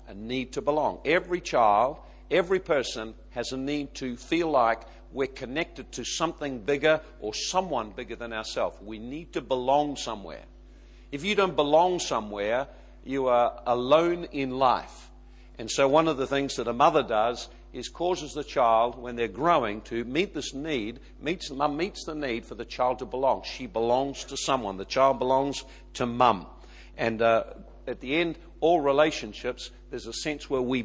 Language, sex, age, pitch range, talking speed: English, male, 50-69, 115-145 Hz, 175 wpm